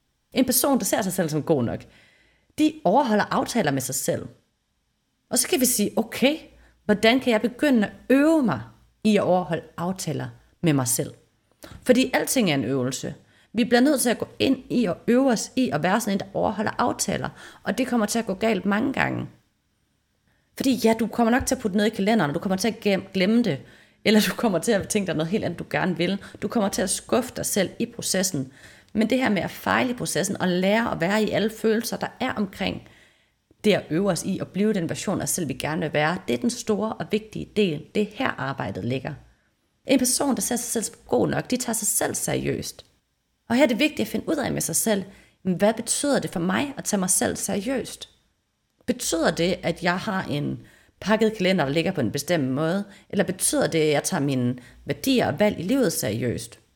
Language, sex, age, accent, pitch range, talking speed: Danish, female, 30-49, native, 175-235 Hz, 230 wpm